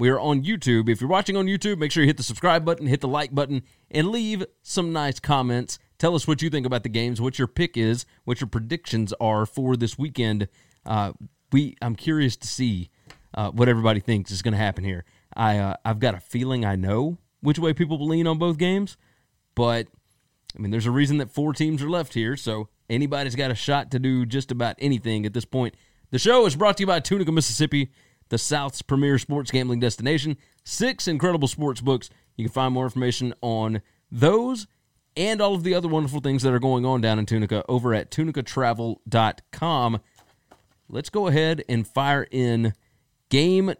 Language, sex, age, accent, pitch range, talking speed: English, male, 30-49, American, 115-155 Hz, 205 wpm